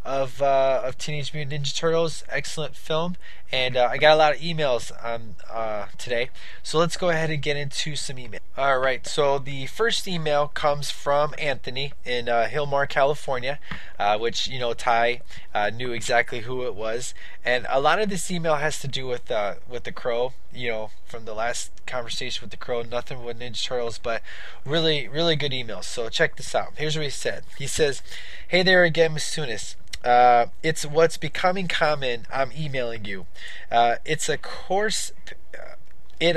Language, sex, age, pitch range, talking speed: English, male, 20-39, 120-150 Hz, 185 wpm